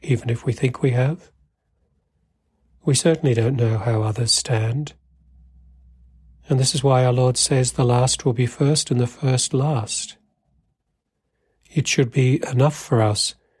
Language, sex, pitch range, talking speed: English, male, 110-135 Hz, 155 wpm